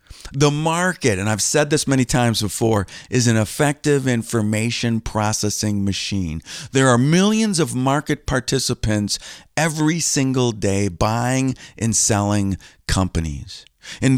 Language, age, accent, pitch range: English, 50-69, American, 105-145 Hz